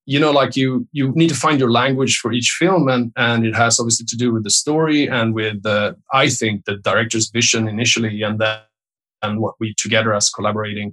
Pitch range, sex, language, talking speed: 110-130 Hz, male, English, 225 wpm